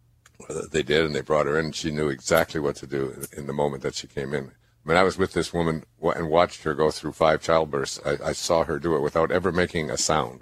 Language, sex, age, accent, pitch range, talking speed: English, male, 60-79, American, 70-95 Hz, 275 wpm